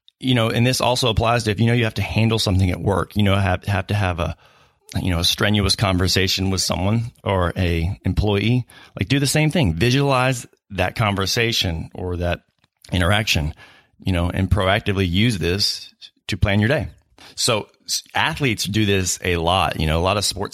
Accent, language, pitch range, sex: American, English, 90-110 Hz, male